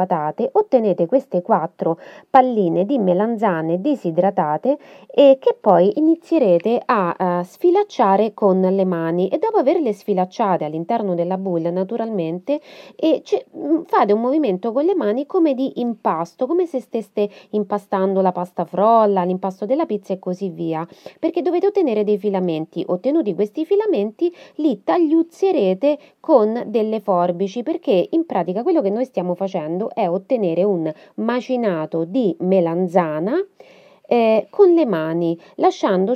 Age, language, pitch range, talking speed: 30-49, Italian, 185-290 Hz, 135 wpm